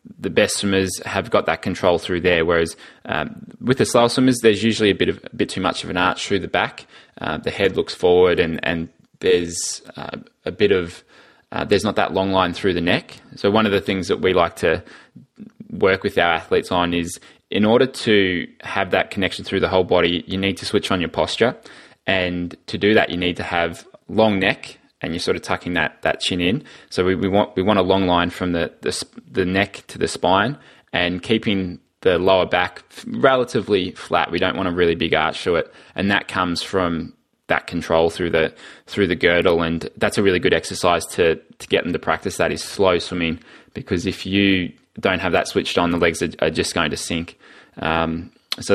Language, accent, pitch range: English, Australian, 85-100 Hz